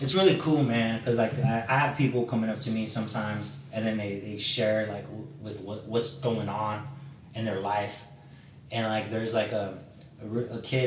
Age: 20-39